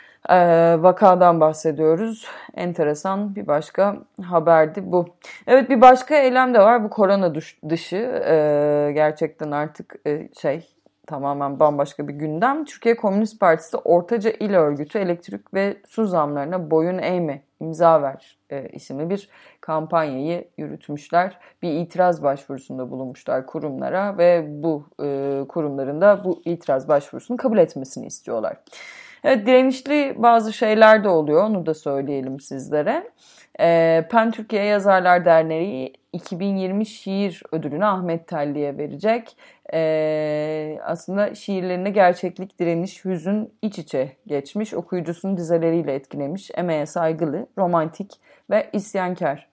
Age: 30-49